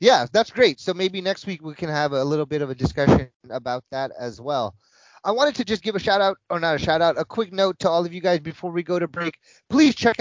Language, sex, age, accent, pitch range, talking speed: English, male, 30-49, American, 135-170 Hz, 280 wpm